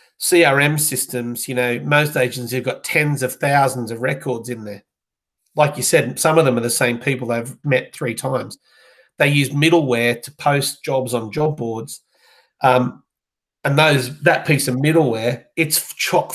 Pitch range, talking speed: 125-150 Hz, 175 wpm